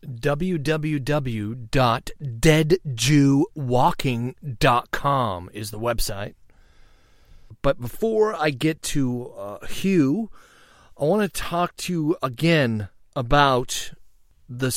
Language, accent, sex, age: English, American, male, 40-59